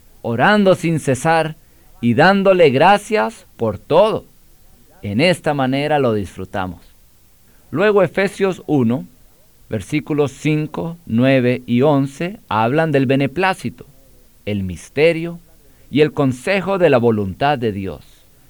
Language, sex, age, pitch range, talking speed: Spanish, male, 50-69, 120-170 Hz, 110 wpm